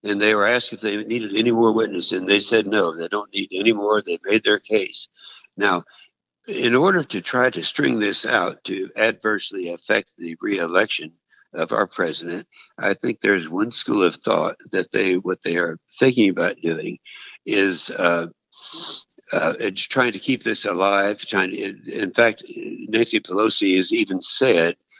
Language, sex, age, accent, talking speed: English, male, 60-79, American, 175 wpm